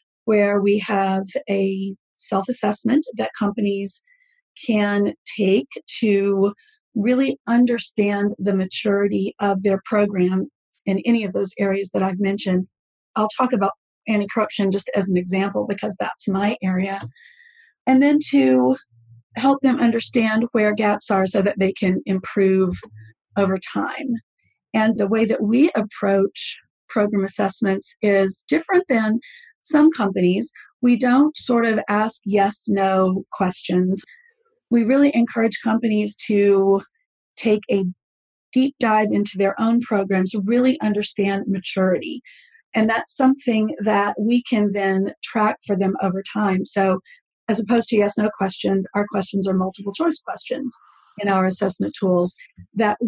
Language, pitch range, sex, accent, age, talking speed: English, 195-240 Hz, female, American, 40-59, 140 wpm